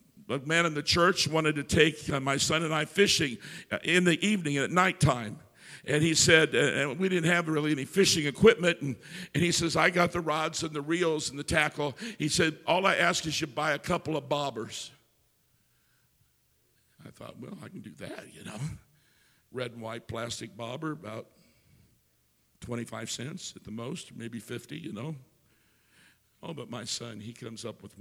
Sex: male